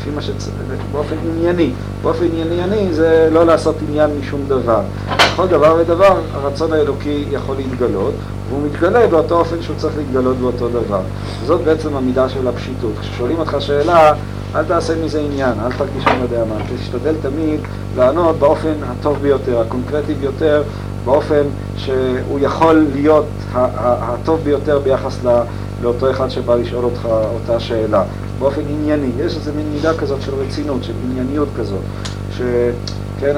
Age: 50-69